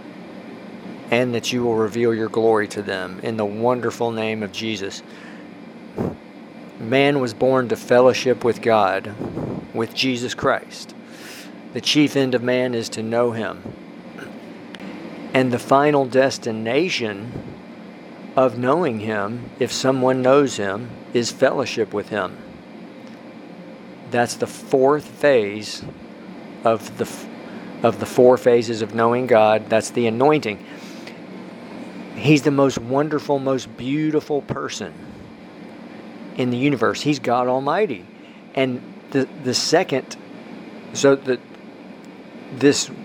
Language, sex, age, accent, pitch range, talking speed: English, male, 50-69, American, 115-140 Hz, 120 wpm